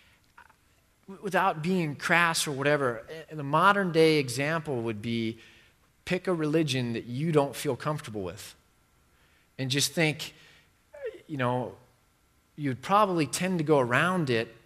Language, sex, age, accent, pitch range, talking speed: English, male, 30-49, American, 125-165 Hz, 135 wpm